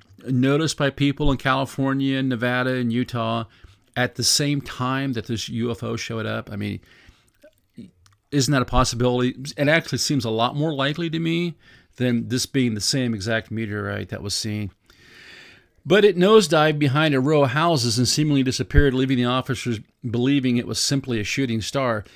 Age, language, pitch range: 40-59, English, 115-145 Hz